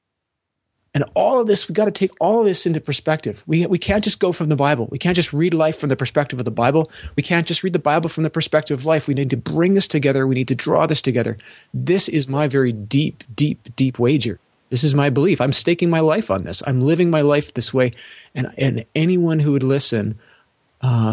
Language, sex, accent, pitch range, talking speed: English, male, American, 120-155 Hz, 245 wpm